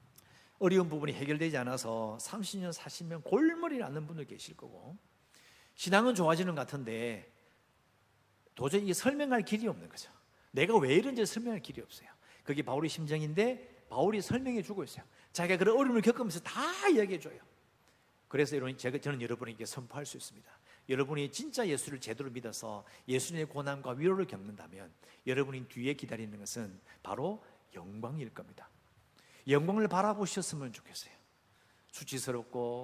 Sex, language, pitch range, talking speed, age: male, English, 125-195 Hz, 120 wpm, 50-69